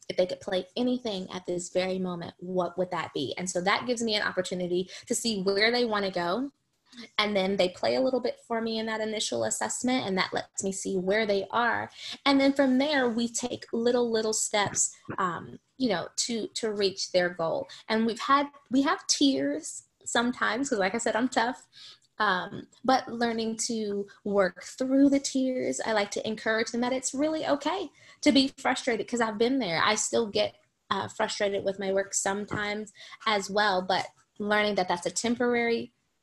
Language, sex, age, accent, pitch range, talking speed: English, female, 20-39, American, 195-250 Hz, 195 wpm